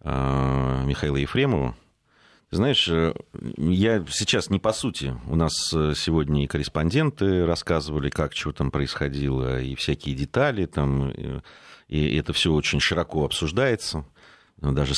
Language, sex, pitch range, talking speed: Russian, male, 70-85 Hz, 115 wpm